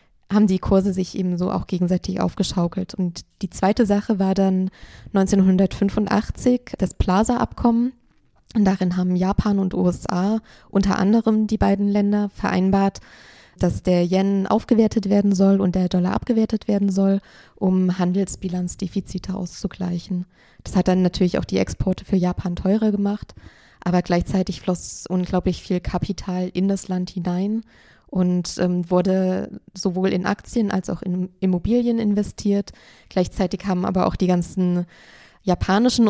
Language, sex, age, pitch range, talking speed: German, female, 20-39, 185-200 Hz, 140 wpm